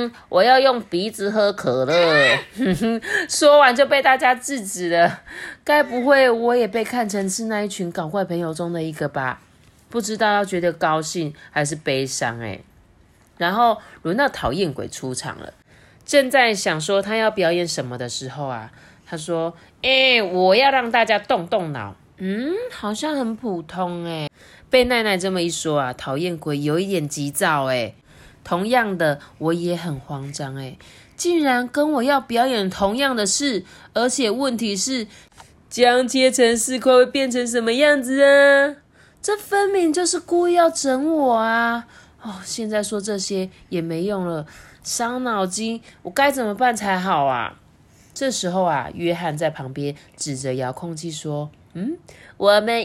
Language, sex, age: Chinese, female, 20-39